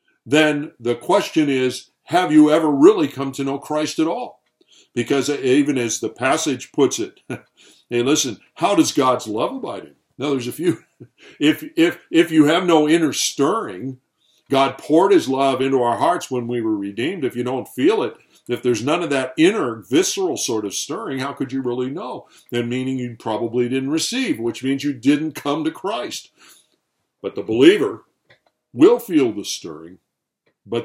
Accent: American